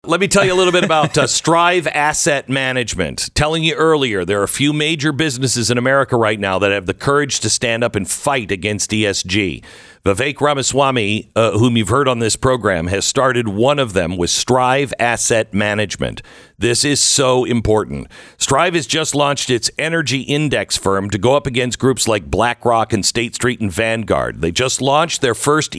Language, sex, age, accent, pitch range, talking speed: English, male, 50-69, American, 110-145 Hz, 195 wpm